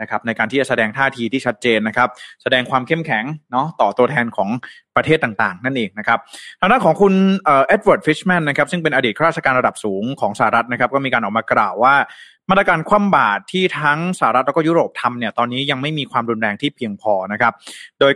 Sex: male